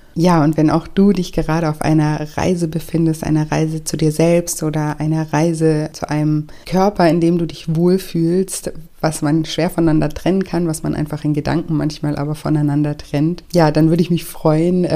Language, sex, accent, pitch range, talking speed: German, female, German, 150-165 Hz, 195 wpm